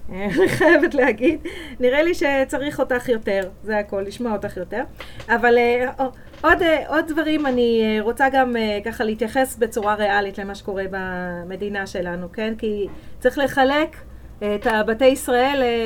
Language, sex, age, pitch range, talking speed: Hebrew, female, 30-49, 210-265 Hz, 130 wpm